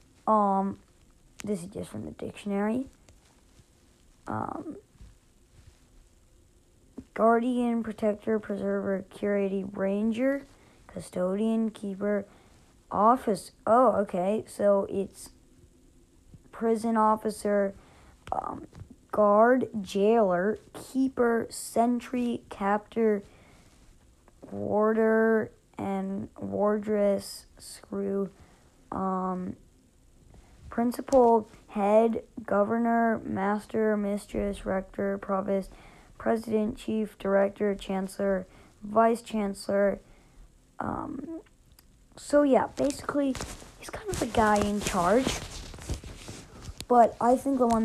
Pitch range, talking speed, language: 195-230 Hz, 80 wpm, English